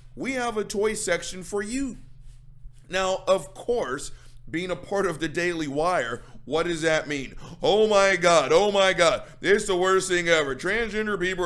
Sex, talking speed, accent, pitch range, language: male, 185 wpm, American, 130-190 Hz, English